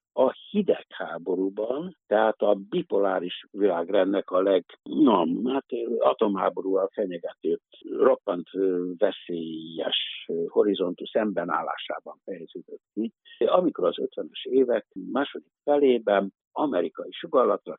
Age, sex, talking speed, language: 60-79, male, 80 wpm, Hungarian